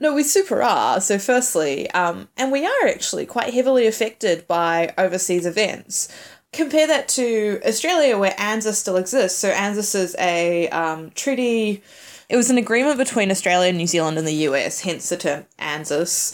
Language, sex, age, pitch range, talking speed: English, female, 10-29, 165-230 Hz, 170 wpm